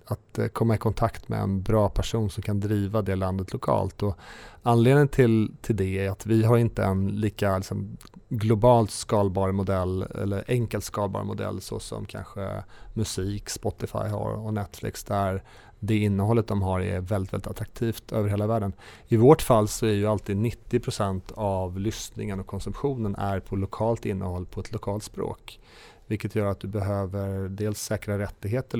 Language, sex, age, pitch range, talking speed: Swedish, male, 30-49, 100-115 Hz, 175 wpm